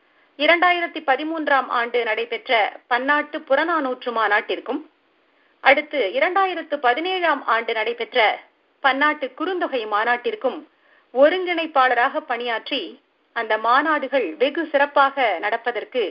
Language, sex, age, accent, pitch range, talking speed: Tamil, female, 50-69, native, 245-320 Hz, 55 wpm